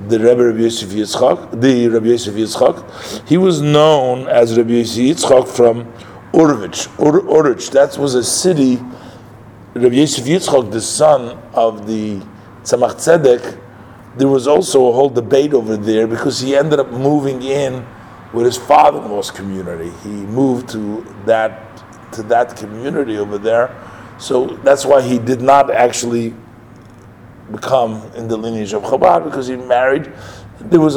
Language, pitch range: English, 110-135 Hz